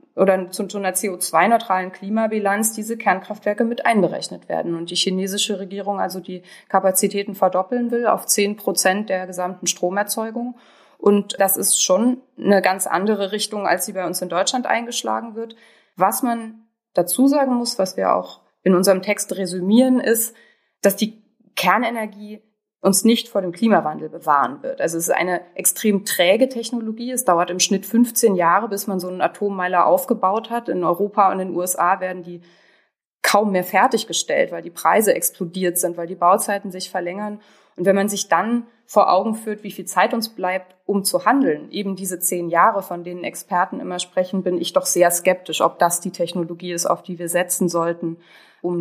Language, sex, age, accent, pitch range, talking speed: German, female, 20-39, German, 180-220 Hz, 180 wpm